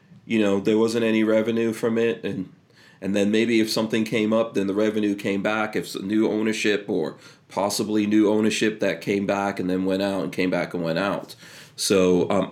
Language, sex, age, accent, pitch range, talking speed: English, male, 30-49, American, 100-120 Hz, 205 wpm